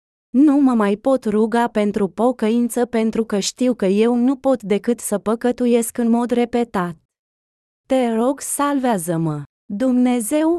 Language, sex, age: Romanian, female, 20-39